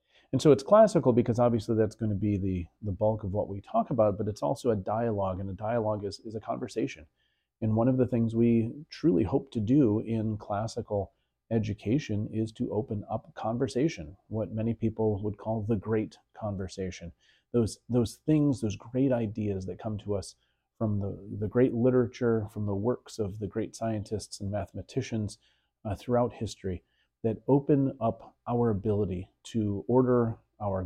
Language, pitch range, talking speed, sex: English, 100-120 Hz, 175 wpm, male